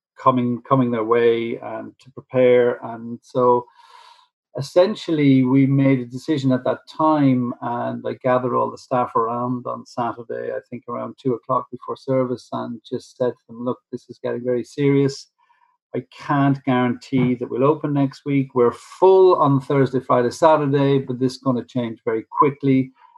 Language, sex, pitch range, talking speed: English, male, 120-145 Hz, 170 wpm